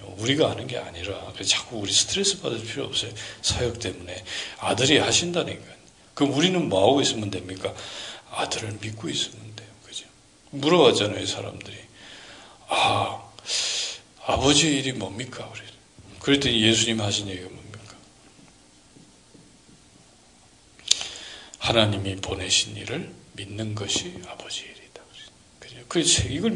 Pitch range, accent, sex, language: 100-130 Hz, native, male, Korean